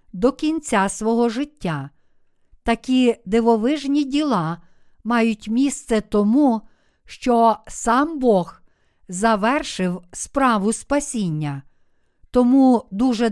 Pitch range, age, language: 205-250 Hz, 50-69, Ukrainian